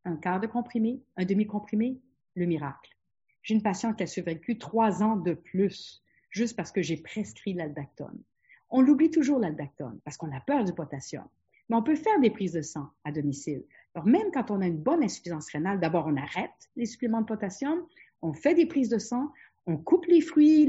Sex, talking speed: female, 205 wpm